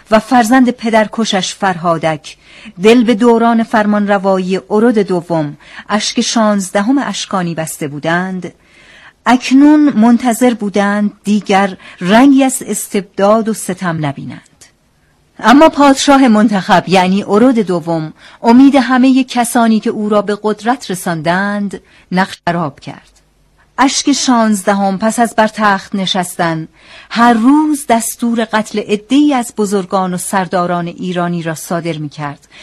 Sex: female